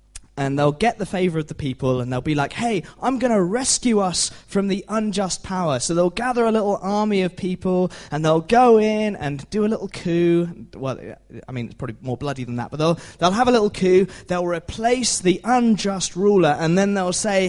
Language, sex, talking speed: English, male, 220 wpm